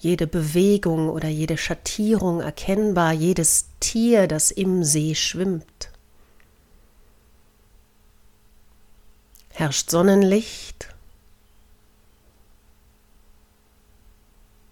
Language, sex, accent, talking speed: German, female, German, 55 wpm